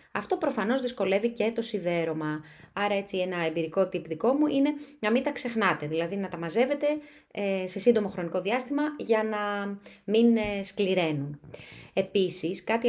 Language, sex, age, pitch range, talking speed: Greek, female, 20-39, 165-230 Hz, 150 wpm